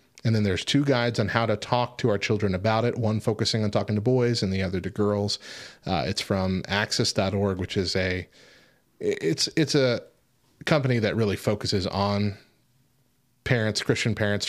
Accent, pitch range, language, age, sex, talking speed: American, 95-125 Hz, English, 30-49, male, 180 wpm